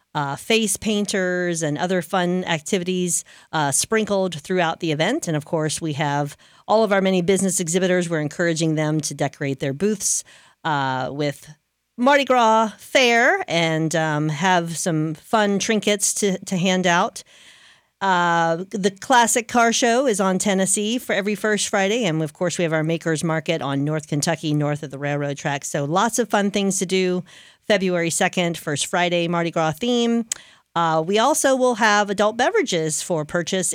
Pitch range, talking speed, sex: 155-205 Hz, 170 wpm, female